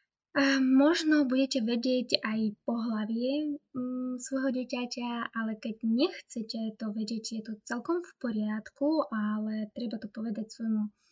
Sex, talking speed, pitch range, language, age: female, 120 wpm, 220-260 Hz, Slovak, 20-39